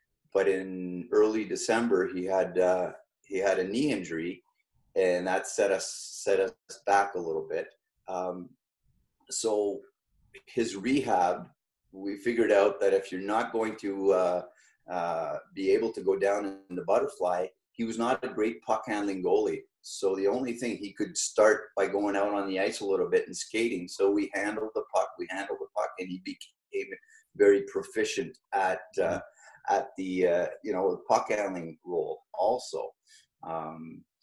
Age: 30-49